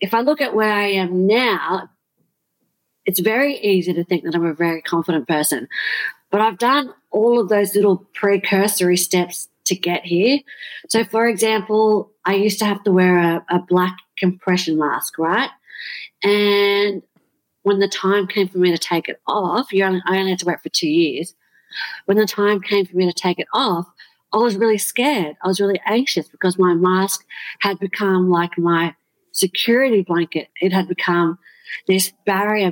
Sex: female